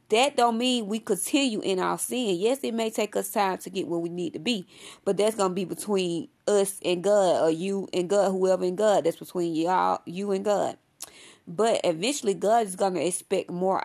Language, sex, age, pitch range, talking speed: English, female, 20-39, 180-220 Hz, 225 wpm